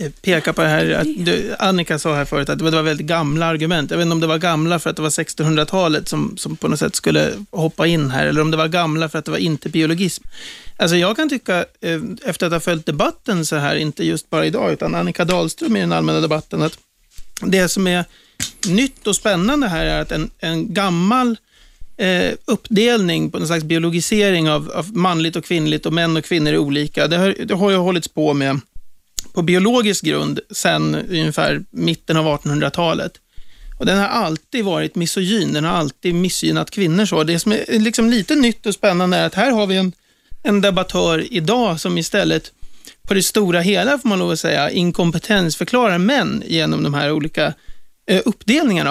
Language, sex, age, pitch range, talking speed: Swedish, male, 30-49, 155-195 Hz, 200 wpm